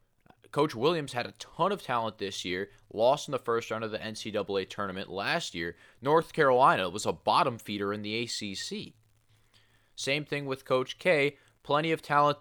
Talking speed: 180 wpm